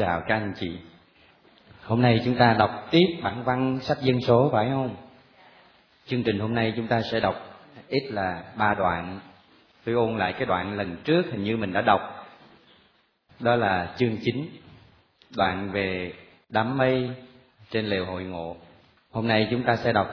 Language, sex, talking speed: Vietnamese, male, 175 wpm